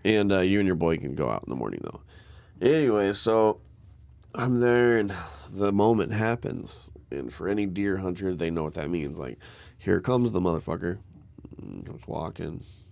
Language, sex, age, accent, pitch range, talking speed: English, male, 20-39, American, 85-110 Hz, 185 wpm